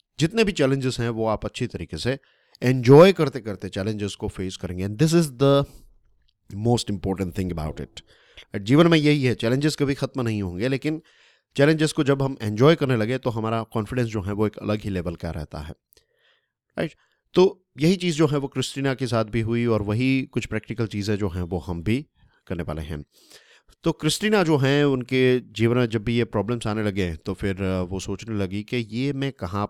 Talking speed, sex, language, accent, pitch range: 205 wpm, male, Hindi, native, 95-130 Hz